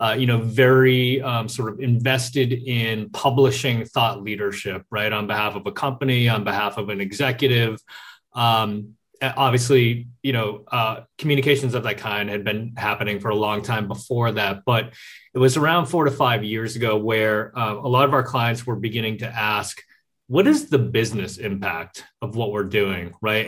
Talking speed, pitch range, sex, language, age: 180 wpm, 110-135 Hz, male, English, 30-49